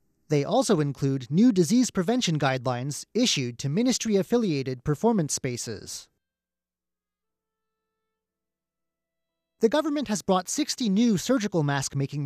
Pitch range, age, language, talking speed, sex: 140-220 Hz, 30-49, English, 100 wpm, male